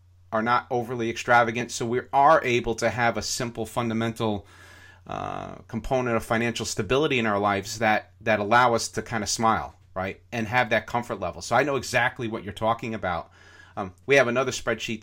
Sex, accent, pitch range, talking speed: male, American, 105-120 Hz, 190 wpm